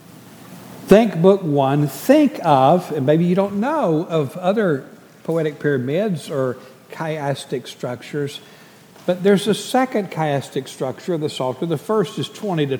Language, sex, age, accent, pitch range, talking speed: English, male, 60-79, American, 150-195 Hz, 145 wpm